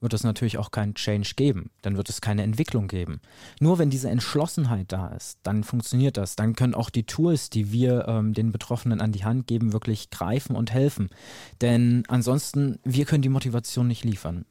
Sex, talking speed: male, 200 wpm